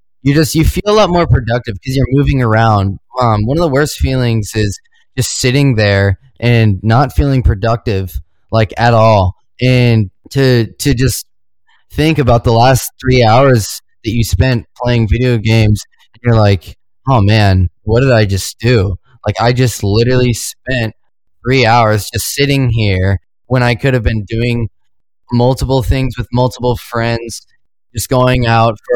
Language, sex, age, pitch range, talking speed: English, male, 20-39, 105-130 Hz, 170 wpm